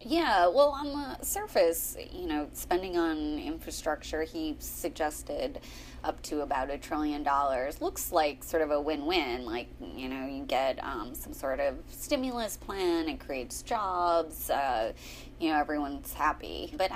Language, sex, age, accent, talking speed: English, female, 20-39, American, 155 wpm